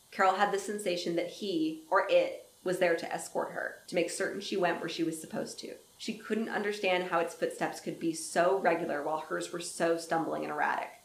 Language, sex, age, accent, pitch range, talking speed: English, female, 20-39, American, 170-195 Hz, 215 wpm